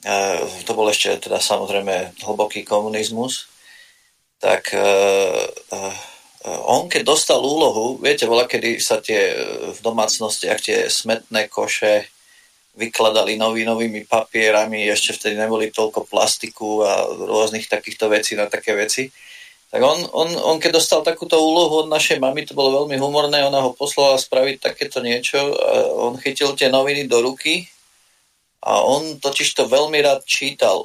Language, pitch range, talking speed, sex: Slovak, 120-155 Hz, 150 wpm, male